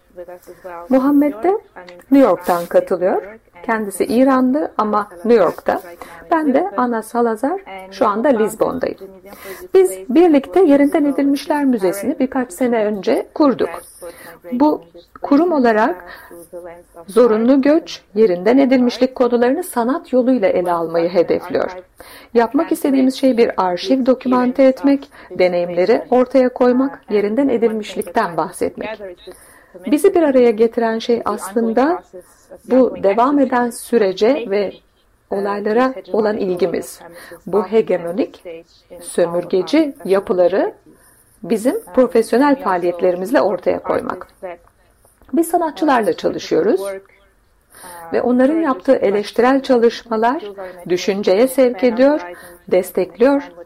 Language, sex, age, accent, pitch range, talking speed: Turkish, female, 50-69, native, 185-265 Hz, 95 wpm